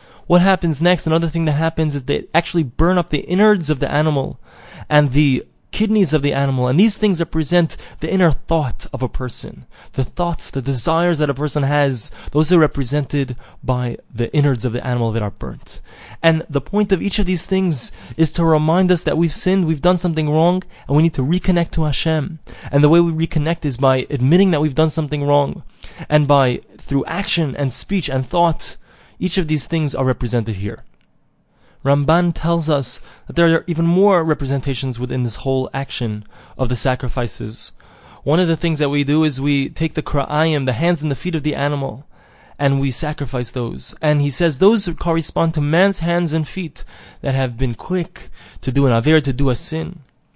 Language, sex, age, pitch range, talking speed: English, male, 20-39, 135-170 Hz, 200 wpm